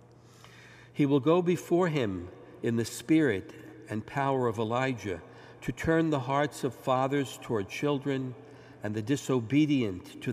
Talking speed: 140 wpm